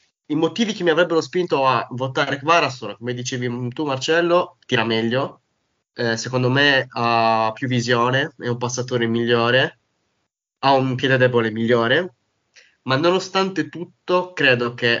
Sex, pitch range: male, 115-130 Hz